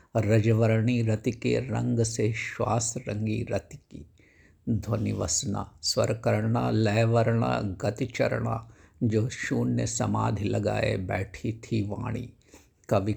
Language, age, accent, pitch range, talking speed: Hindi, 60-79, native, 105-120 Hz, 105 wpm